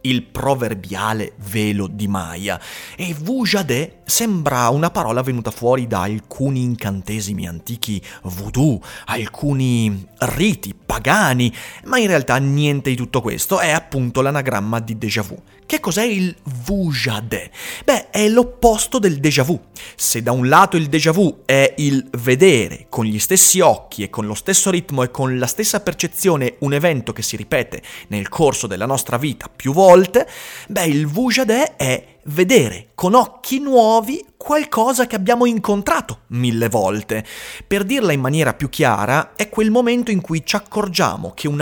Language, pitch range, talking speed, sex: Italian, 120-195 Hz, 155 wpm, male